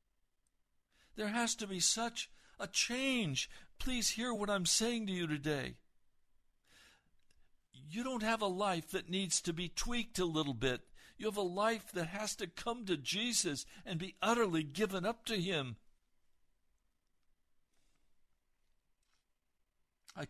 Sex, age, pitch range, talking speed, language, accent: male, 60-79, 125-200 Hz, 135 wpm, English, American